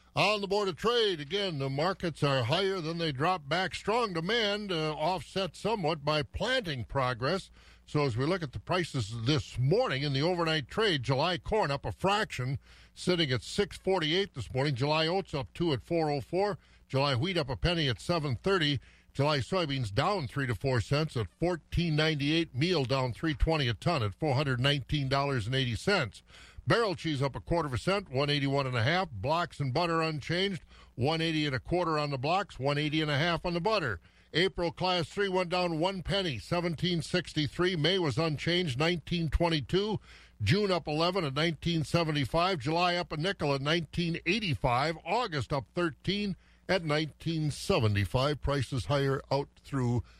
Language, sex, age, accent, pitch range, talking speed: English, male, 50-69, American, 135-180 Hz, 180 wpm